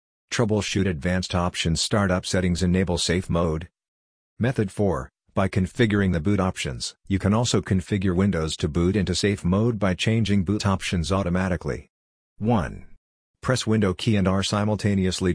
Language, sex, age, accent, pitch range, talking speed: English, male, 50-69, American, 90-105 Hz, 145 wpm